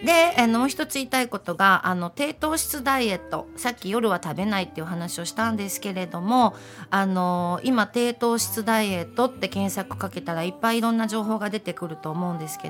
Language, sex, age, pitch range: Japanese, female, 40-59, 175-245 Hz